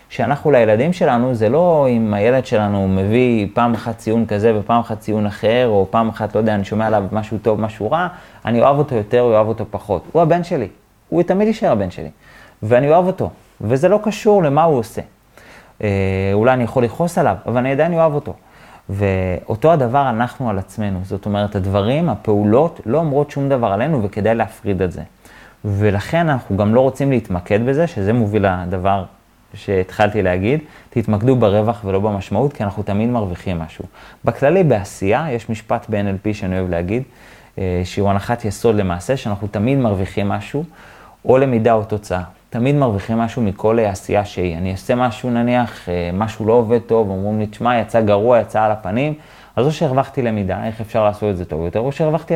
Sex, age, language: male, 30-49, Hebrew